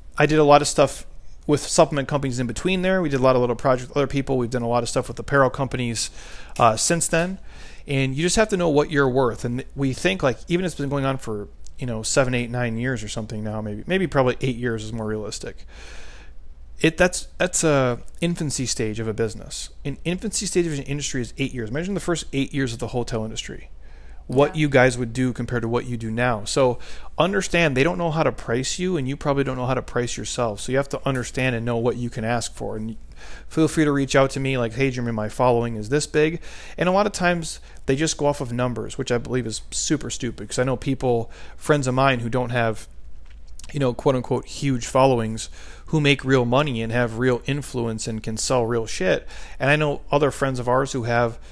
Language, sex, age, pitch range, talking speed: English, male, 30-49, 115-145 Hz, 245 wpm